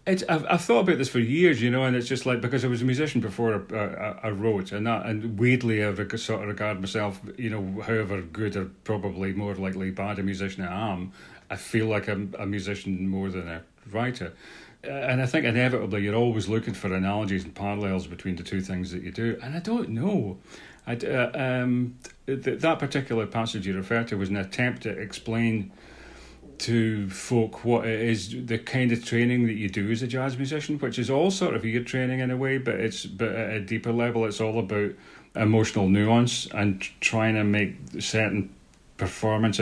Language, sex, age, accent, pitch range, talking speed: English, male, 40-59, British, 100-125 Hz, 210 wpm